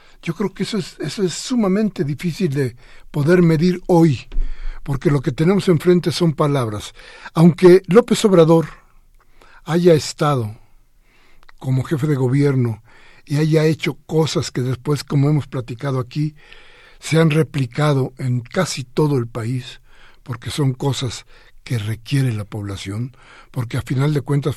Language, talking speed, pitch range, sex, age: Spanish, 145 wpm, 125-170 Hz, male, 60-79